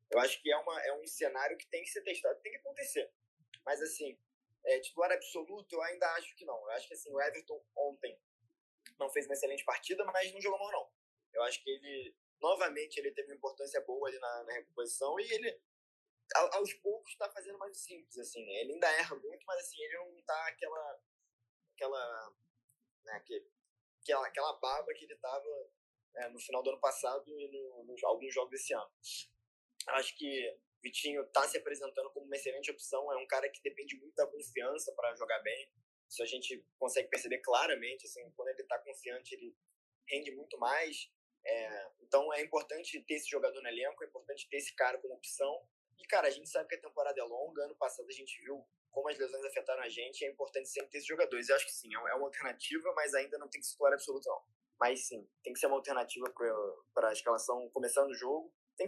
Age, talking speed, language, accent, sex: 20-39, 210 wpm, Portuguese, Brazilian, male